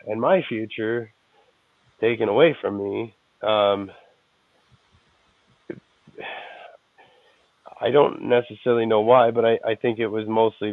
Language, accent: English, American